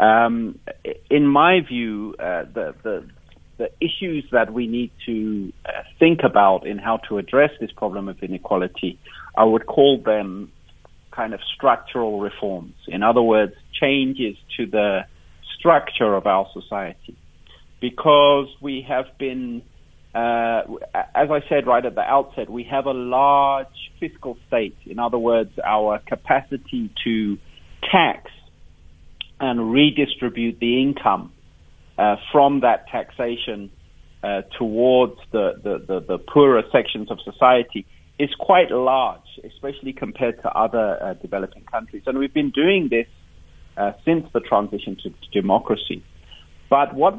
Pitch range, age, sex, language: 100-140 Hz, 50-69, male, English